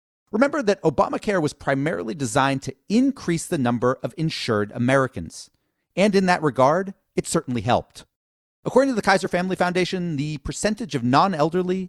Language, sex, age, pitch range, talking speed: English, male, 40-59, 125-180 Hz, 150 wpm